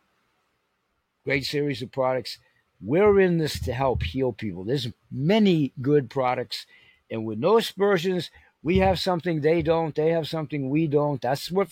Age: 50-69